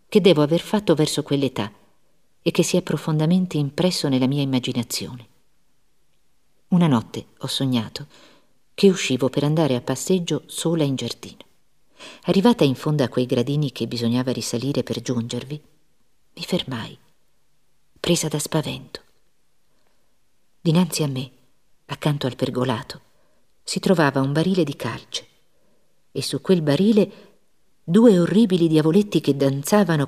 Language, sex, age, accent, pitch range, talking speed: Italian, female, 50-69, native, 140-185 Hz, 130 wpm